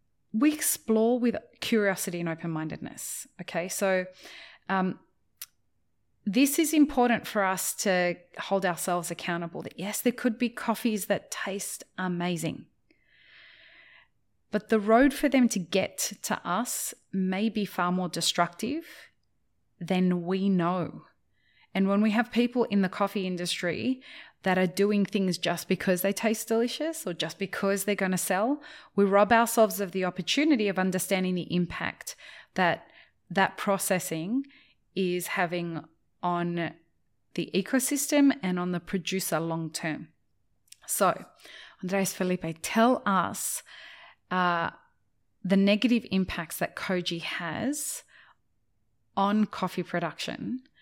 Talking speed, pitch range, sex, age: 125 wpm, 180-230 Hz, female, 30-49